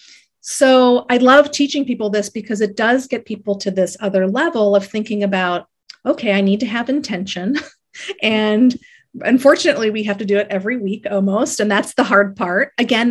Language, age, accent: English, 40-59, American